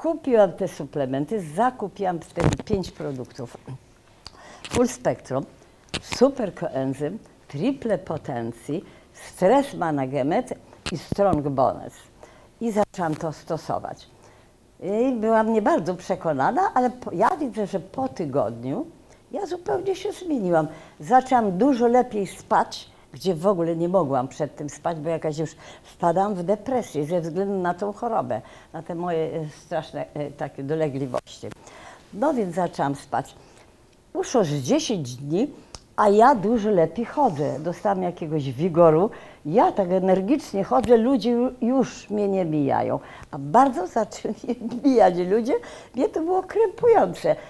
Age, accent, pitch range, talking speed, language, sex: 50-69, native, 155-240 Hz, 125 wpm, Polish, female